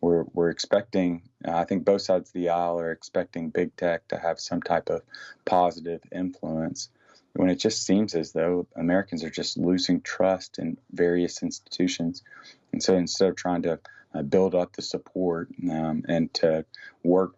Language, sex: English, male